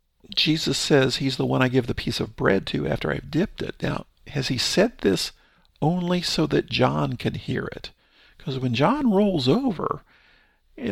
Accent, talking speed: American, 185 wpm